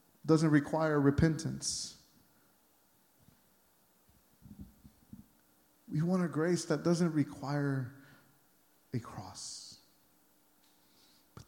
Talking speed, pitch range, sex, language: 70 wpm, 155-215 Hz, male, English